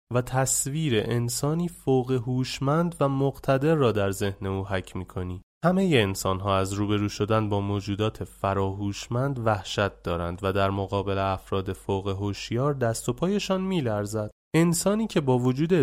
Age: 30-49